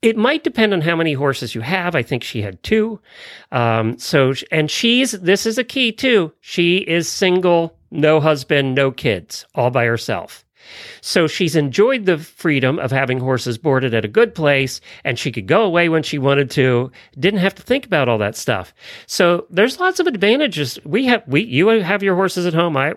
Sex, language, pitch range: male, English, 130-190 Hz